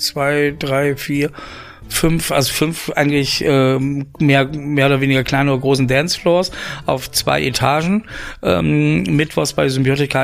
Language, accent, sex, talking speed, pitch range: German, German, male, 135 wpm, 130-145 Hz